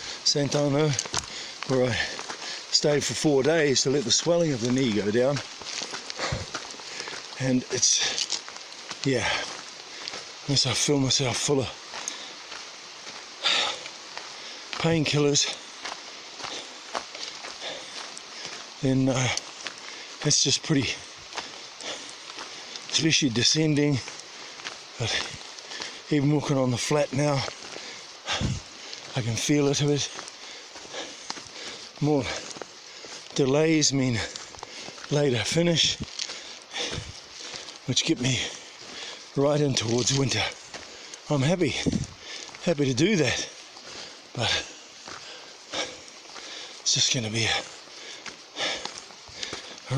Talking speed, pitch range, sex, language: 85 wpm, 125-150 Hz, male, English